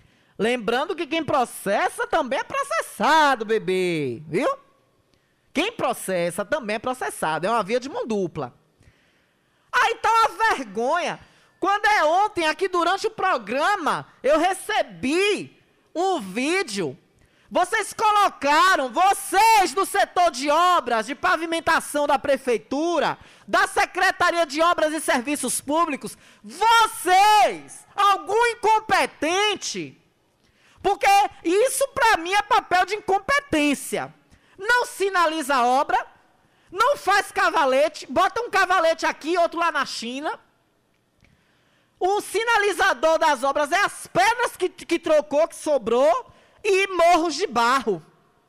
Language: Portuguese